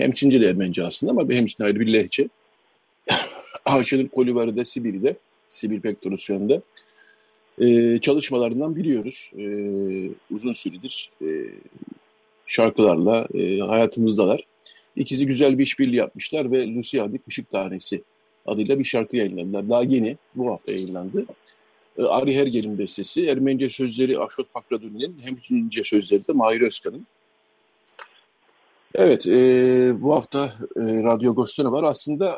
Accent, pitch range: native, 110-140 Hz